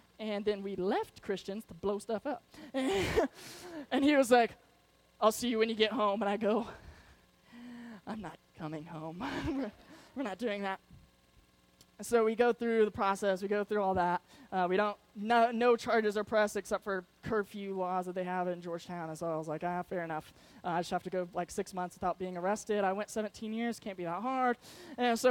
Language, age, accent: English, 20-39, American